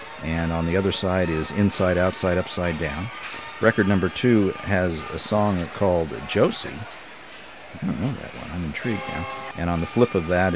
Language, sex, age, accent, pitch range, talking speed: English, male, 50-69, American, 80-100 Hz, 180 wpm